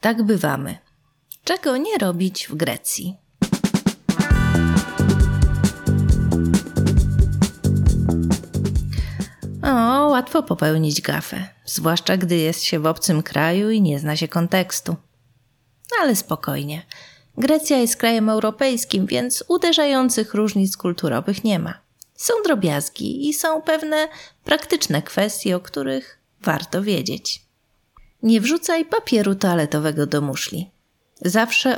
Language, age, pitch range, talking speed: Polish, 30-49, 165-230 Hz, 100 wpm